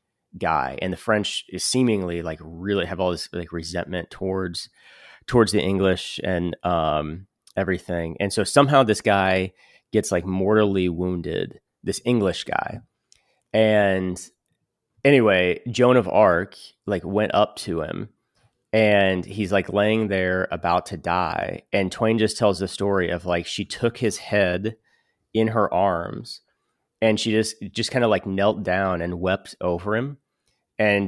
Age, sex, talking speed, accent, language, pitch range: 30-49, male, 155 wpm, American, English, 90-110 Hz